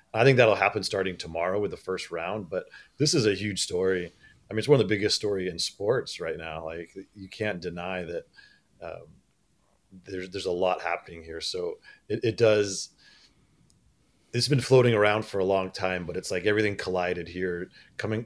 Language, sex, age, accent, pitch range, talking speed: English, male, 30-49, American, 90-110 Hz, 195 wpm